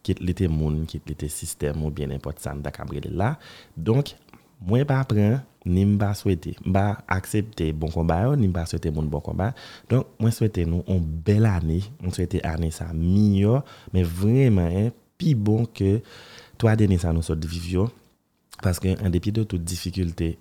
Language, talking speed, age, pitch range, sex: French, 175 wpm, 30-49, 80-110 Hz, male